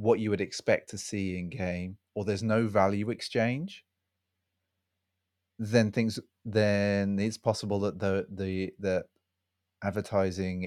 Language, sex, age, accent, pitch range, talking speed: English, male, 30-49, British, 95-105 Hz, 130 wpm